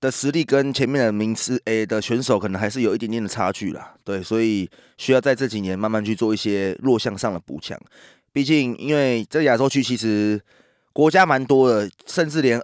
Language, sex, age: Chinese, male, 20-39